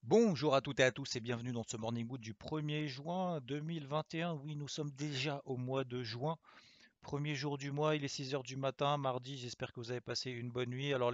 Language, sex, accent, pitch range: French, male, French, 115-135 Hz